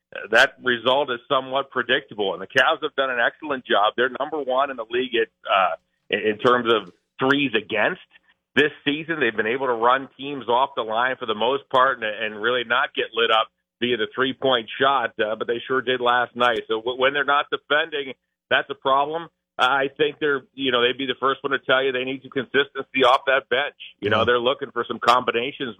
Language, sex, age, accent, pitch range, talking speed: English, male, 50-69, American, 120-135 Hz, 220 wpm